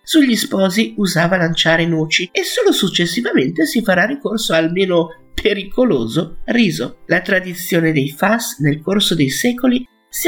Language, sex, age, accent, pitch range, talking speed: Italian, male, 50-69, native, 155-225 Hz, 140 wpm